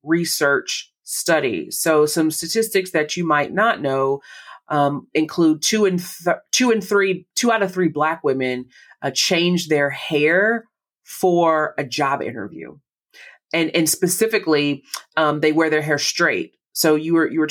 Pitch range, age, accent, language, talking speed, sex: 150-175 Hz, 30-49, American, English, 160 wpm, female